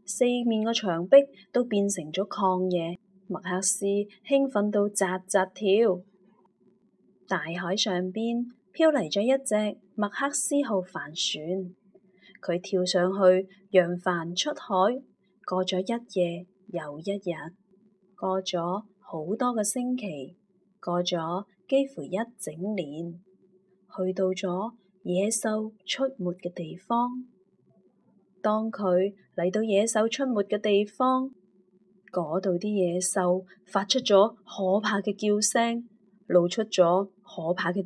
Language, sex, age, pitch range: Chinese, female, 20-39, 185-215 Hz